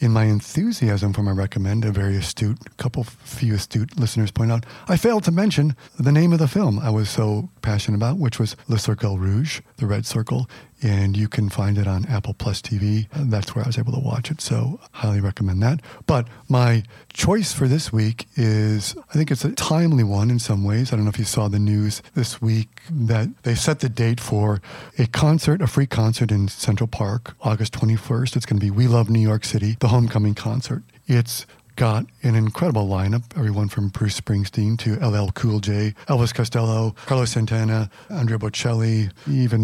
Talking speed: 200 wpm